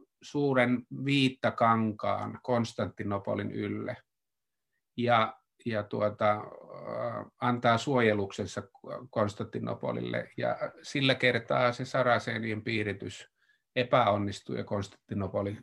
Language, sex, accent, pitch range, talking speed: Finnish, male, native, 110-130 Hz, 75 wpm